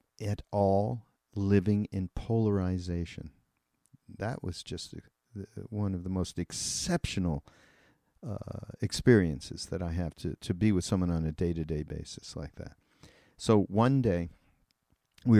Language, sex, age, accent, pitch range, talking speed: English, male, 50-69, American, 85-110 Hz, 130 wpm